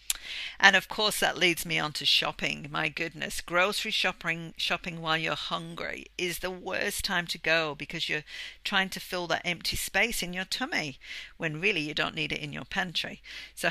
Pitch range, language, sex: 150-185 Hz, English, female